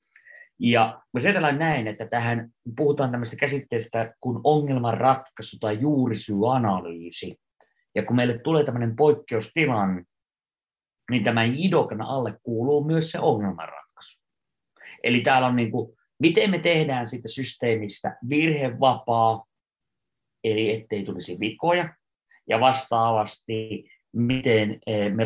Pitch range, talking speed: 110-140 Hz, 105 wpm